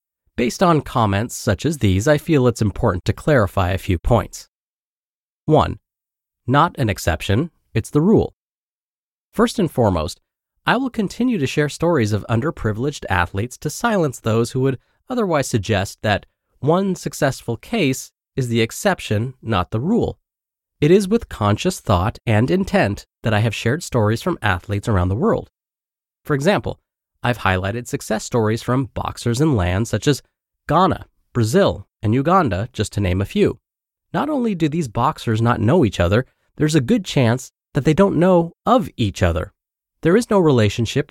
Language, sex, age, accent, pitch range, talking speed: English, male, 30-49, American, 105-155 Hz, 165 wpm